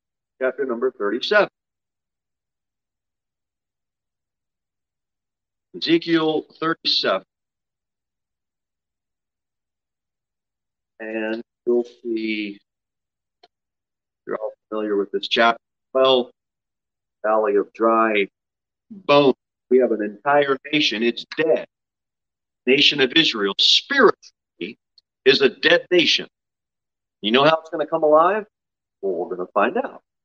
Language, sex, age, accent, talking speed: English, male, 40-59, American, 95 wpm